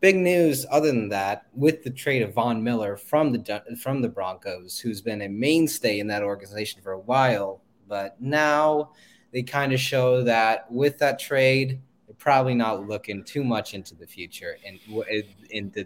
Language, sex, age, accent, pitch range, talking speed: English, male, 20-39, American, 105-135 Hz, 180 wpm